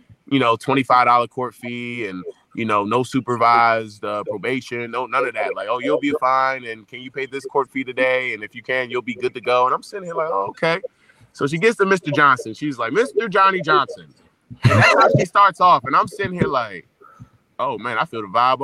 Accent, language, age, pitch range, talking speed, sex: American, English, 20-39, 125-205 Hz, 235 wpm, male